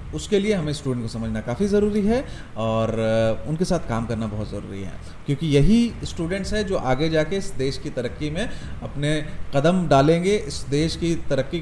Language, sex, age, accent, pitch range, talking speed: Hindi, male, 30-49, native, 115-180 Hz, 185 wpm